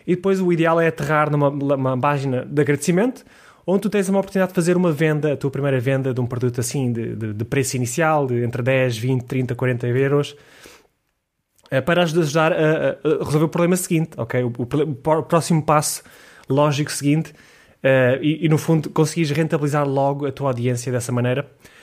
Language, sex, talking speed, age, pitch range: Portuguese, male, 190 wpm, 20-39, 130-165 Hz